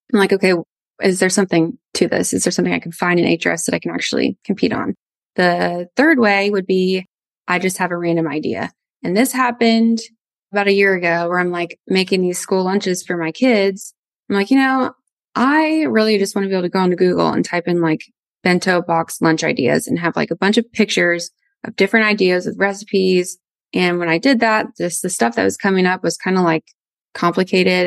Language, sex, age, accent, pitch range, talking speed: English, female, 20-39, American, 180-225 Hz, 220 wpm